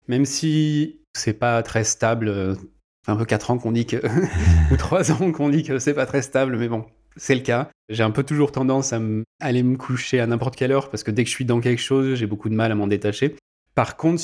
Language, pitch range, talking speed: French, 110-140 Hz, 255 wpm